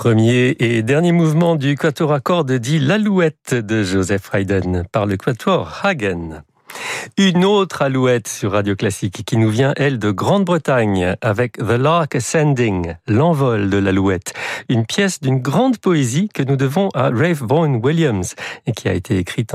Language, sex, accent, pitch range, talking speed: French, male, French, 110-160 Hz, 165 wpm